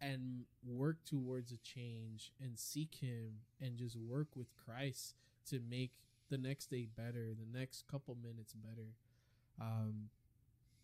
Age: 20-39